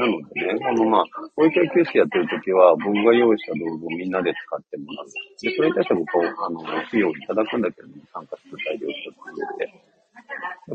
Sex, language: male, Japanese